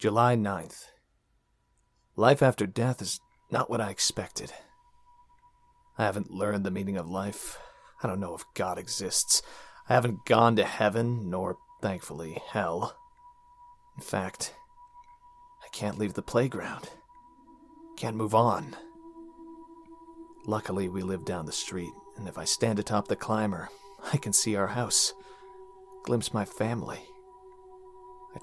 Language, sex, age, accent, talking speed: English, male, 30-49, American, 135 wpm